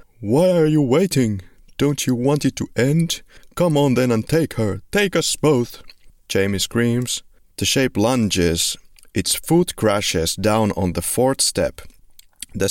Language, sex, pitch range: English, male, 85-105 Hz